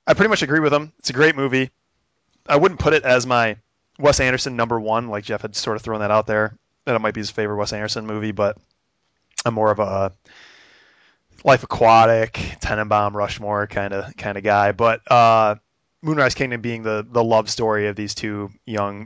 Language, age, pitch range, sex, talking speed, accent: English, 20-39, 100-125 Hz, male, 205 wpm, American